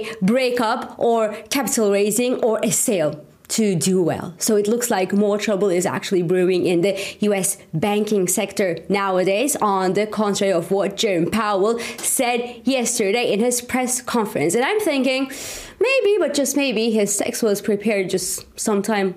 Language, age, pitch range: English, 20-39, 200-245 Hz